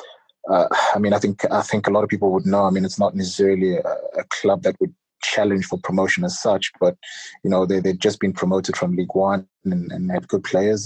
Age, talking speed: 20-39, 245 wpm